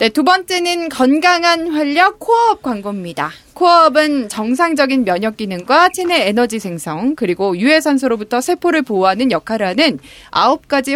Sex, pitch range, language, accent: female, 215-335 Hz, Korean, native